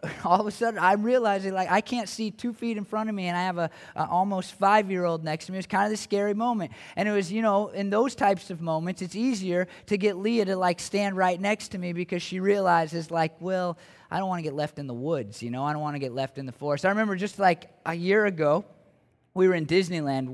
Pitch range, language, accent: 150-195 Hz, English, American